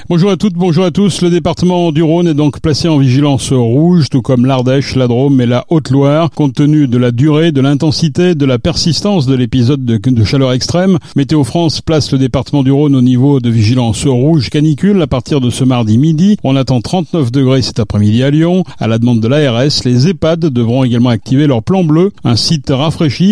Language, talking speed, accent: French, 210 wpm, French